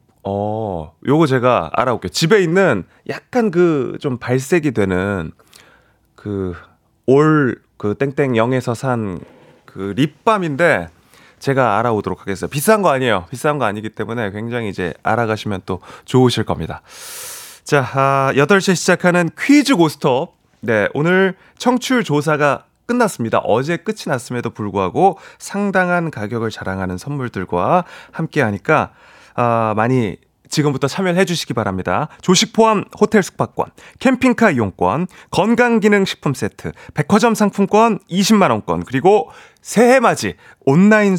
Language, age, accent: Korean, 30-49, native